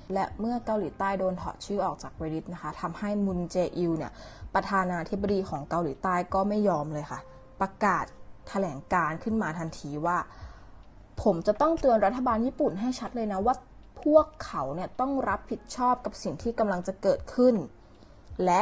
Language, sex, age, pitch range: Thai, female, 20-39, 170-220 Hz